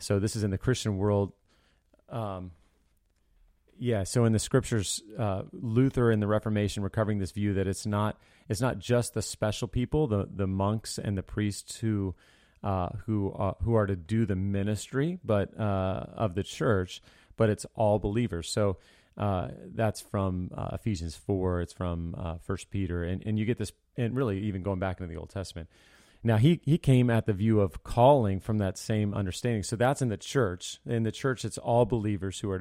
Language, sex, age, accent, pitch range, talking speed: English, male, 30-49, American, 95-115 Hz, 195 wpm